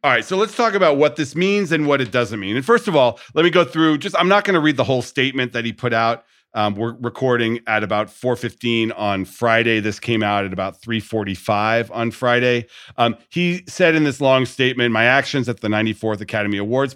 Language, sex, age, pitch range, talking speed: English, male, 40-59, 105-135 Hz, 230 wpm